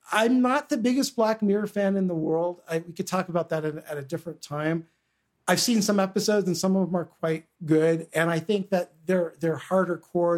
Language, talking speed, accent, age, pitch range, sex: English, 230 wpm, American, 50-69, 150-180 Hz, male